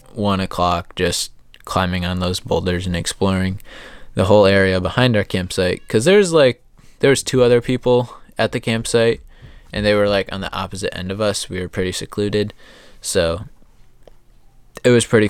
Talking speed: 170 wpm